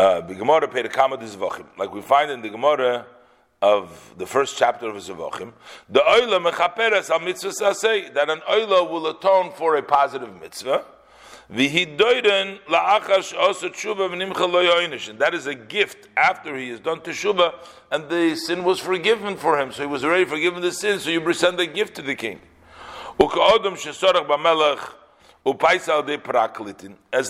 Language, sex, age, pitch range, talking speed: English, male, 50-69, 145-195 Hz, 150 wpm